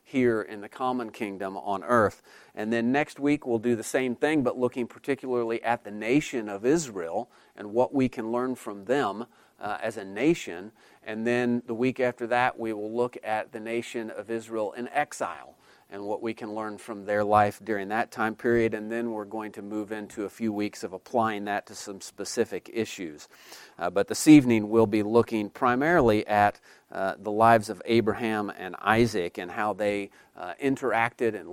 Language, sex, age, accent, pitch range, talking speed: English, male, 40-59, American, 110-130 Hz, 195 wpm